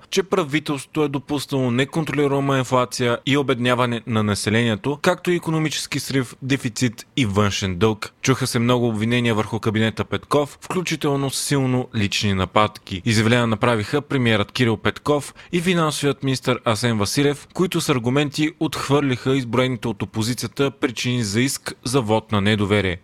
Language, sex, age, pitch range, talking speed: Bulgarian, male, 30-49, 115-140 Hz, 140 wpm